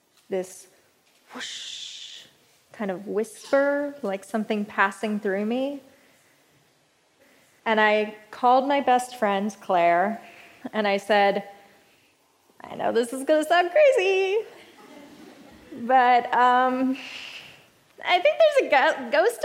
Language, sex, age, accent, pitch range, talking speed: English, female, 20-39, American, 230-310 Hz, 105 wpm